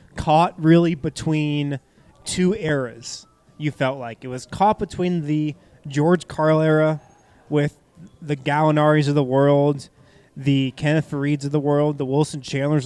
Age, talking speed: 20-39, 145 wpm